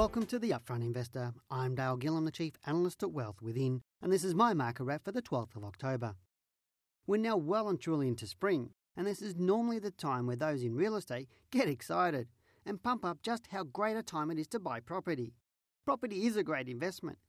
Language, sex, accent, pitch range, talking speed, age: English, male, Australian, 150-220 Hz, 220 wpm, 40-59